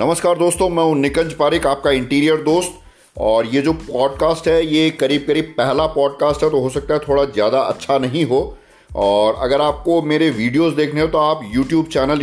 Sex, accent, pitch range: male, native, 125-160 Hz